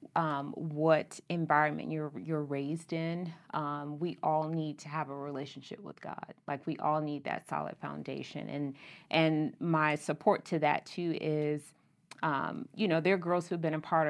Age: 30-49